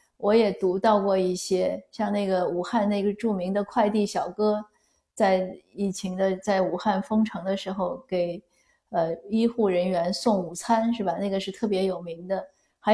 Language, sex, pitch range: Chinese, female, 190-225 Hz